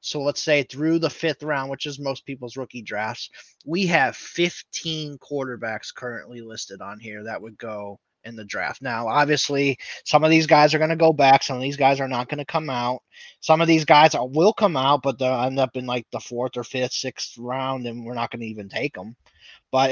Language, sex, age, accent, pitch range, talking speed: English, male, 20-39, American, 120-150 Hz, 230 wpm